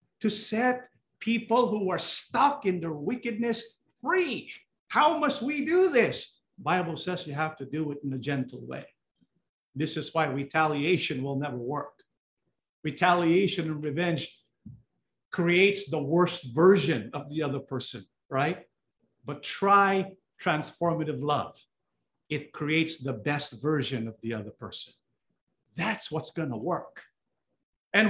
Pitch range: 150-220 Hz